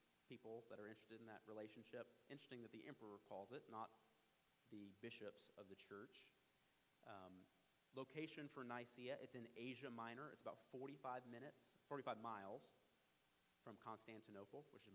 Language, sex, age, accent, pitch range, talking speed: English, male, 30-49, American, 110-140 Hz, 150 wpm